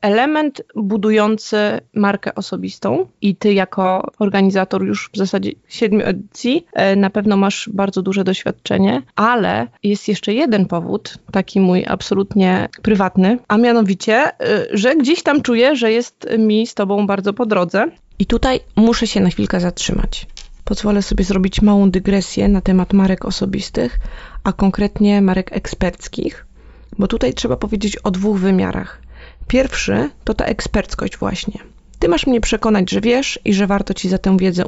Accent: native